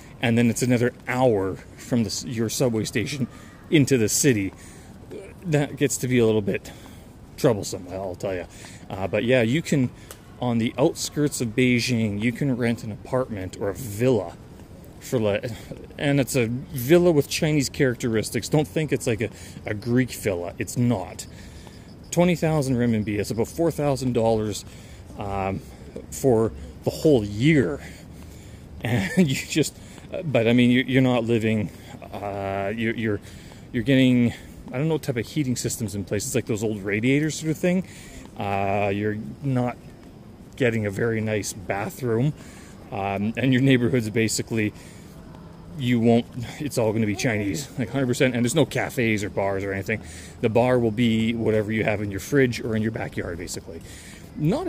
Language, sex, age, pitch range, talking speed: English, male, 30-49, 105-130 Hz, 160 wpm